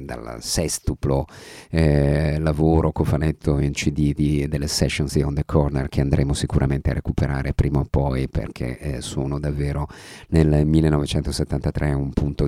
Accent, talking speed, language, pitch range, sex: native, 145 wpm, Italian, 75-85 Hz, male